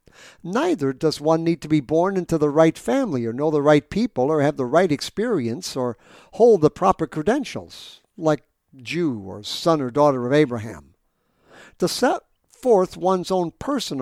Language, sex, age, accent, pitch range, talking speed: English, male, 60-79, American, 135-175 Hz, 170 wpm